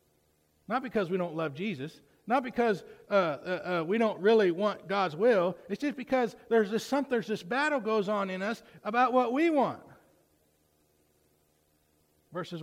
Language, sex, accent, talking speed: English, male, American, 155 wpm